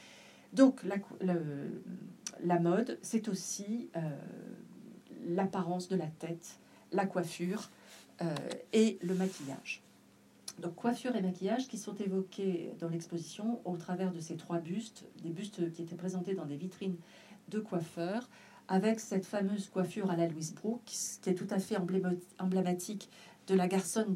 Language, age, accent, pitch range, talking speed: French, 40-59, French, 175-215 Hz, 150 wpm